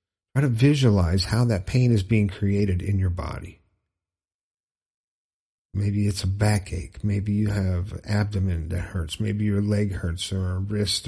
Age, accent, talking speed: 50-69, American, 155 wpm